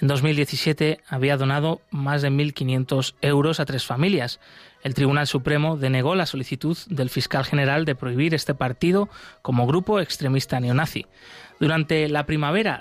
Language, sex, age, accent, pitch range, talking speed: Spanish, male, 30-49, Spanish, 135-175 Hz, 145 wpm